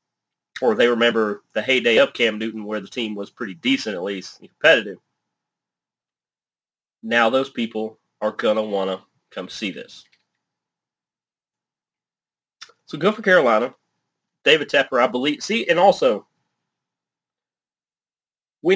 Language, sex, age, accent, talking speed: English, male, 30-49, American, 130 wpm